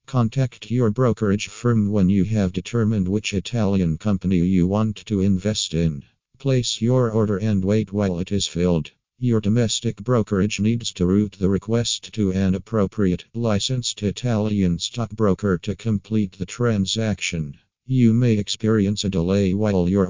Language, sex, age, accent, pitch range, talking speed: Italian, male, 50-69, American, 95-110 Hz, 150 wpm